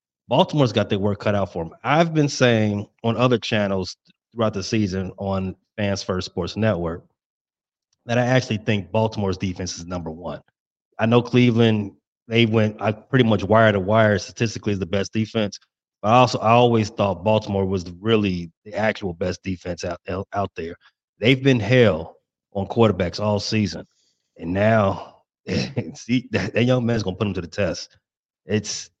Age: 30-49